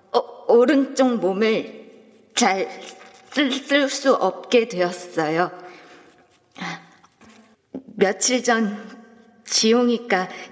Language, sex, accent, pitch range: Korean, female, native, 190-260 Hz